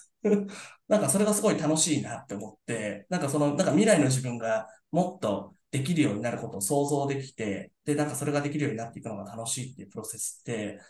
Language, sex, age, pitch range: Japanese, male, 20-39, 115-150 Hz